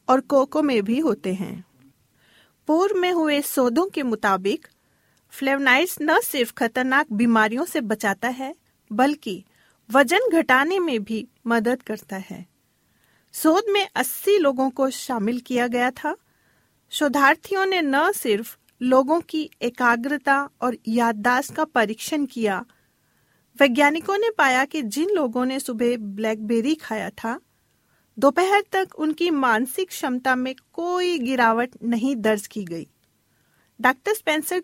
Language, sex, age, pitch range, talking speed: Hindi, female, 40-59, 230-305 Hz, 130 wpm